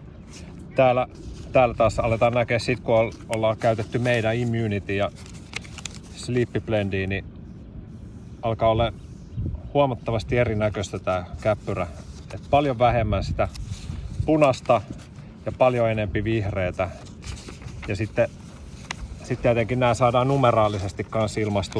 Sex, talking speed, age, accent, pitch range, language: male, 105 wpm, 30-49, native, 100-120 Hz, Finnish